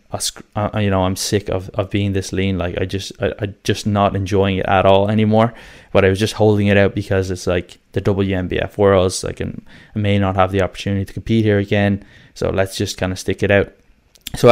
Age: 10-29